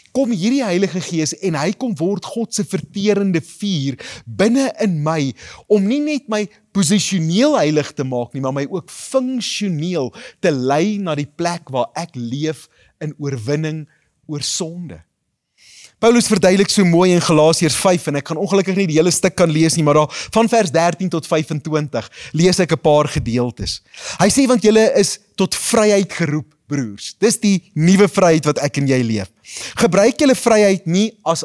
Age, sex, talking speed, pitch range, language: 30-49, male, 180 wpm, 150-205 Hz, English